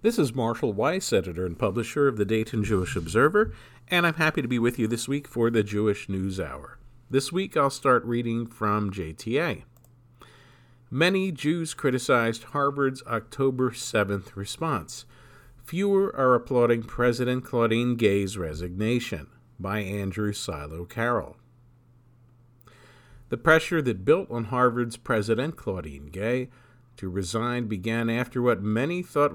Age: 50-69